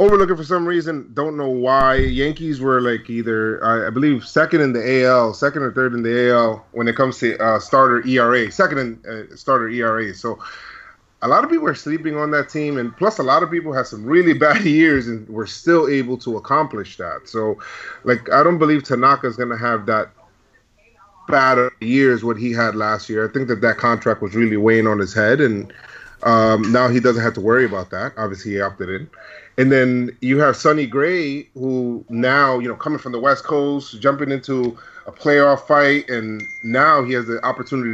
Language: English